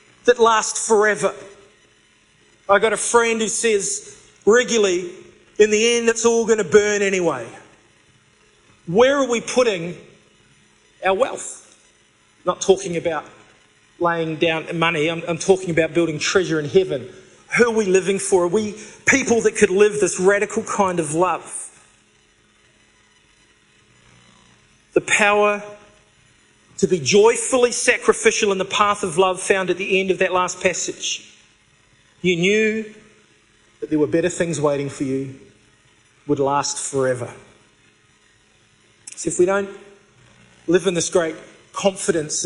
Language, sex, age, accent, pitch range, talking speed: English, male, 40-59, Australian, 165-210 Hz, 135 wpm